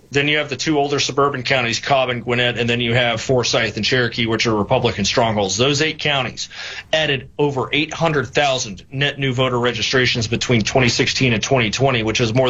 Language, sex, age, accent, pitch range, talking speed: English, male, 30-49, American, 120-135 Hz, 185 wpm